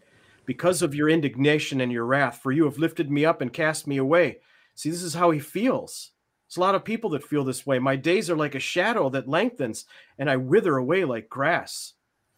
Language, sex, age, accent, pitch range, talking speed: English, male, 40-59, American, 125-160 Hz, 225 wpm